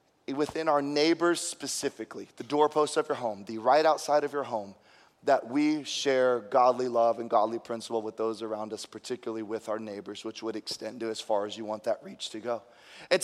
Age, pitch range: 30-49, 130-195 Hz